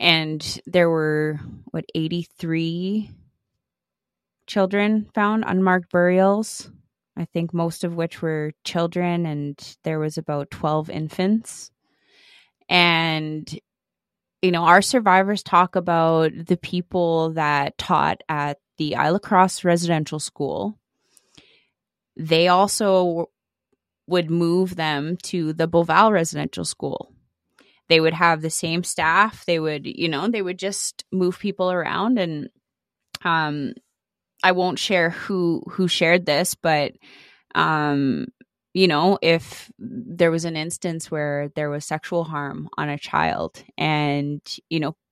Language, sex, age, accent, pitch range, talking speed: English, female, 20-39, American, 155-185 Hz, 125 wpm